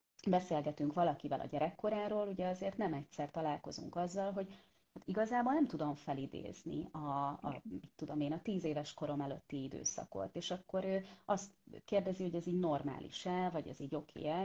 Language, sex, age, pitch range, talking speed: Hungarian, female, 30-49, 145-175 Hz, 160 wpm